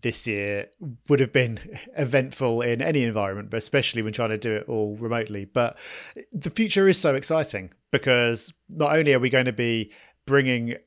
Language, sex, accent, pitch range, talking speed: English, male, British, 115-155 Hz, 180 wpm